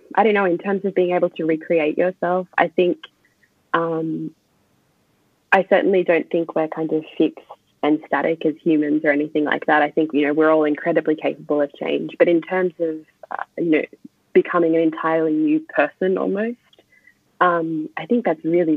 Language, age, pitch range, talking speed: English, 20-39, 155-185 Hz, 185 wpm